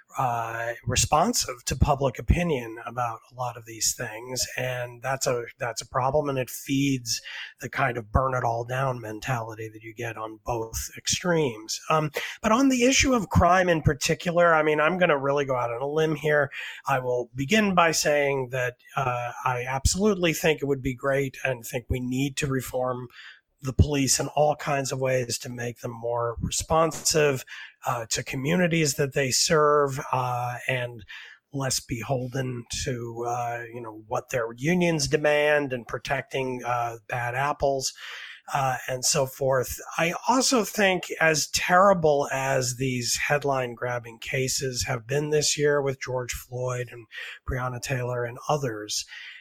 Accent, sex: American, male